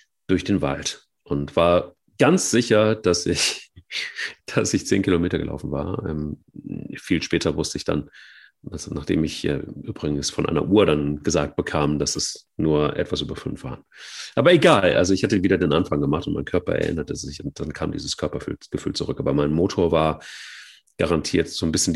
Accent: German